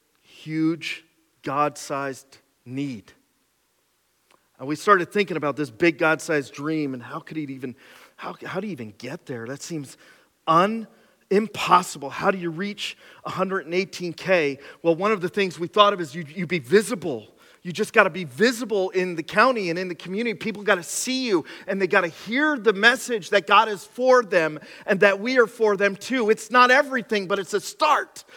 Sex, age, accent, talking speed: male, 40-59, American, 190 wpm